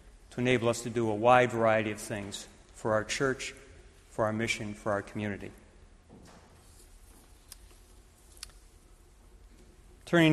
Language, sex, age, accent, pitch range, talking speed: English, male, 50-69, American, 110-130 Hz, 115 wpm